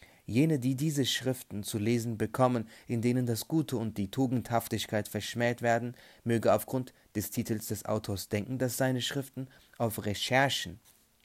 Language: German